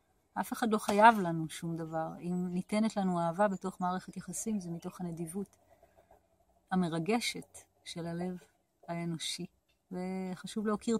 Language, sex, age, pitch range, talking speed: Hebrew, female, 30-49, 175-205 Hz, 125 wpm